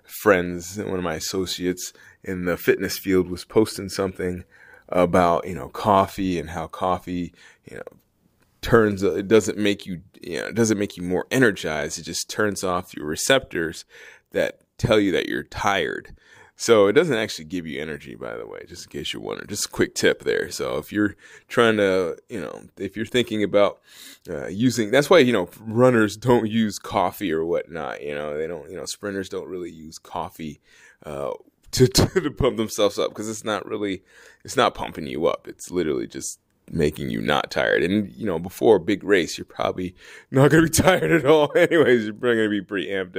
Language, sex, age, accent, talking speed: English, male, 20-39, American, 205 wpm